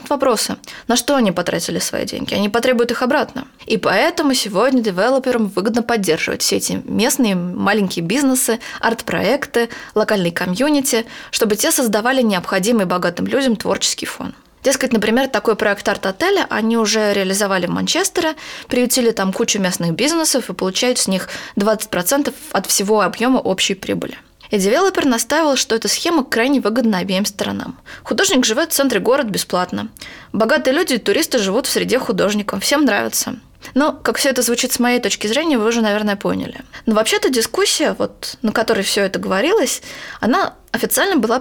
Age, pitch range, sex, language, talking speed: 20-39, 210-270 Hz, female, Russian, 155 wpm